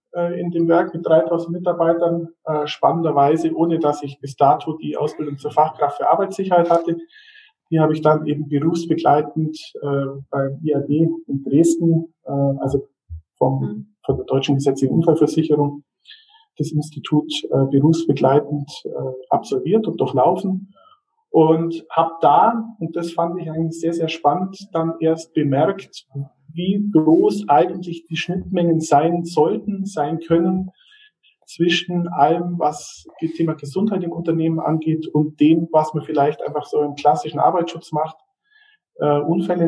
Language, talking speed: German, 130 wpm